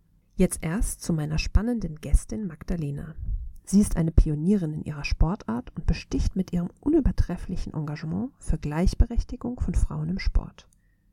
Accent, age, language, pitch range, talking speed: German, 50-69, German, 150-205 Hz, 140 wpm